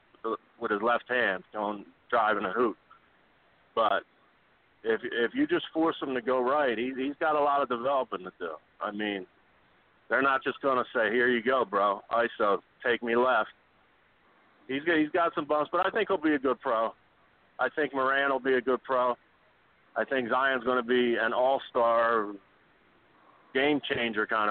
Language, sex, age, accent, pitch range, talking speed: English, male, 50-69, American, 120-145 Hz, 185 wpm